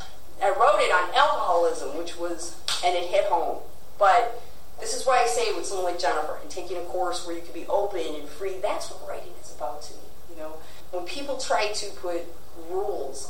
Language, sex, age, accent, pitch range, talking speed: English, female, 30-49, American, 165-260 Hz, 210 wpm